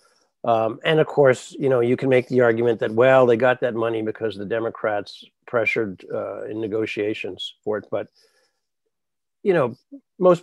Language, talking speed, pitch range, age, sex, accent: English, 175 wpm, 115-155 Hz, 60-79, male, American